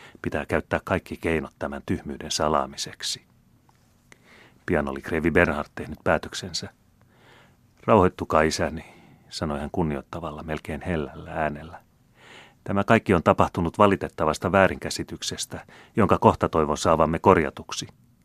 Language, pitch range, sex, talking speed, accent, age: Finnish, 80-95 Hz, male, 105 wpm, native, 30-49